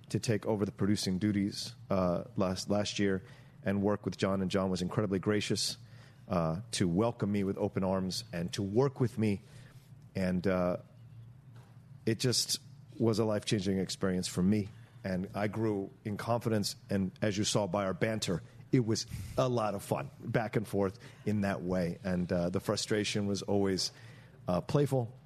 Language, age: English, 40-59